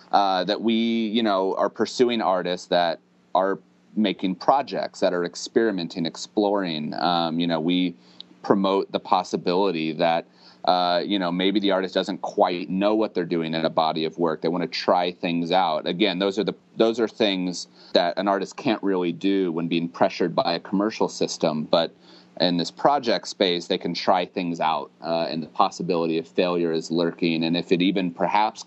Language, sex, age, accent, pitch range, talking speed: English, male, 30-49, American, 80-95 Hz, 190 wpm